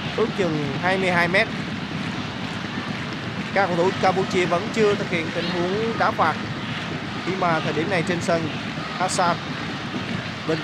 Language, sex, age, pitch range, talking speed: Vietnamese, male, 20-39, 150-185 Hz, 140 wpm